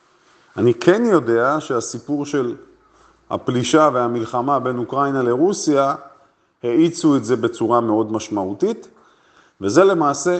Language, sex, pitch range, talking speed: Hebrew, male, 120-170 Hz, 105 wpm